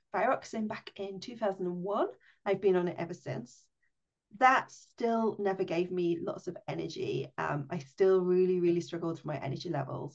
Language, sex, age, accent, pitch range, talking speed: English, female, 30-49, British, 180-210 Hz, 165 wpm